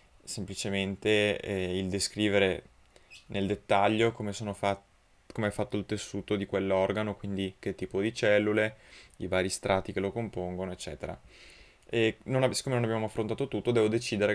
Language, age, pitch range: Italian, 20-39, 95-115 Hz